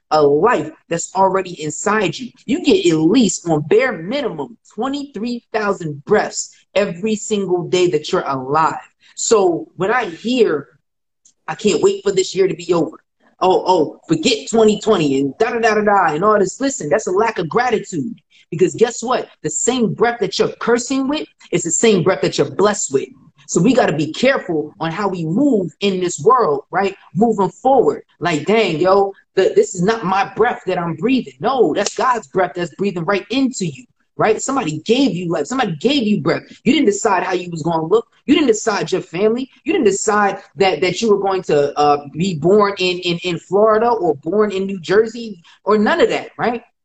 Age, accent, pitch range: 20-39, American, 175-240 Hz